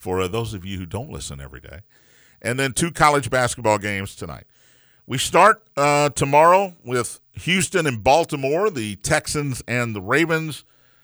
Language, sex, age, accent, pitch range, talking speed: English, male, 50-69, American, 105-140 Hz, 160 wpm